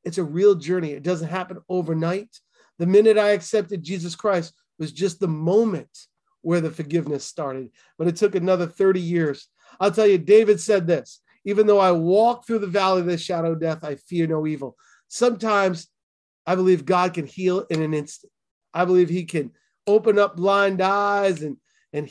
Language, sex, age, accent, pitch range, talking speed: English, male, 30-49, American, 155-200 Hz, 185 wpm